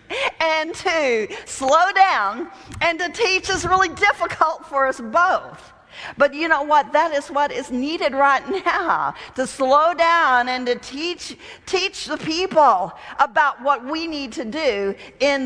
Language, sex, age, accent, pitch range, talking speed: English, female, 50-69, American, 255-325 Hz, 155 wpm